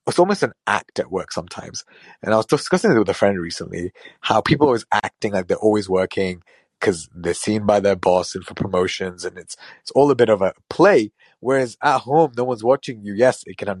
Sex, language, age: male, English, 30-49